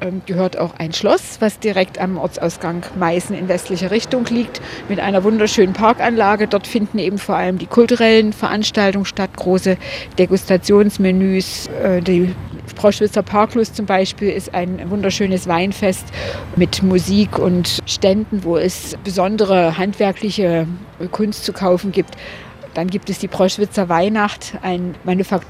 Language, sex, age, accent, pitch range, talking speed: German, female, 50-69, German, 180-210 Hz, 130 wpm